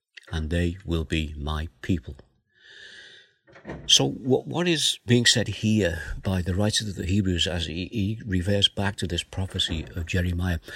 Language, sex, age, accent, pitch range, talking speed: English, male, 60-79, British, 90-120 Hz, 155 wpm